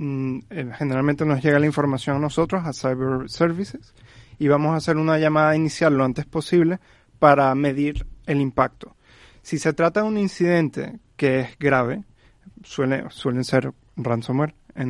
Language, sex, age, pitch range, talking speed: Spanish, male, 30-49, 135-155 Hz, 155 wpm